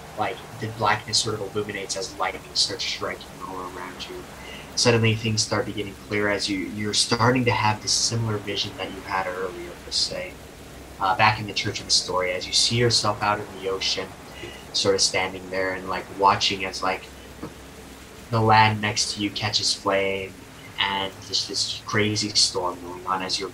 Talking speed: 190 wpm